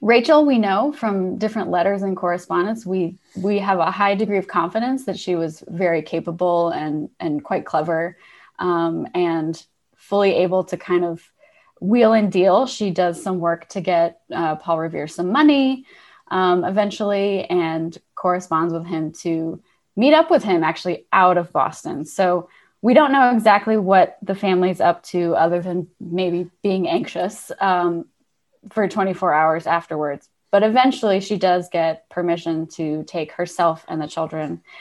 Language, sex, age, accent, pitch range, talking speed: English, female, 20-39, American, 170-215 Hz, 160 wpm